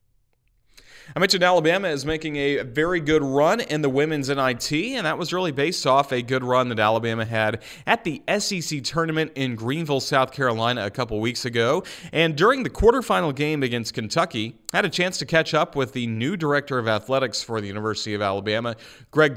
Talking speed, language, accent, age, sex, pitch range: 195 wpm, English, American, 30-49, male, 105-140 Hz